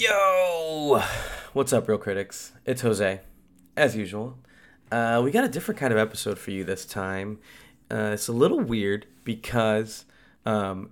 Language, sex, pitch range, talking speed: English, male, 105-130 Hz, 155 wpm